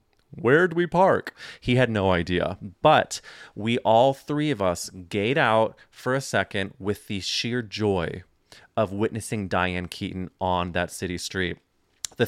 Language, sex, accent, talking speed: English, male, American, 155 wpm